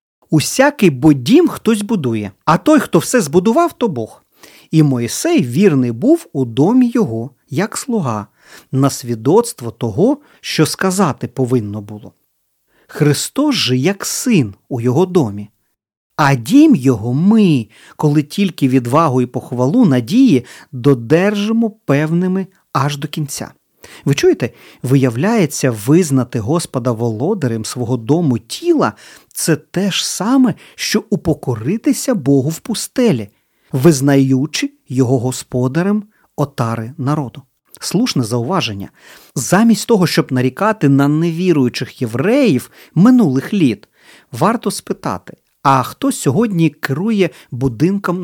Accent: native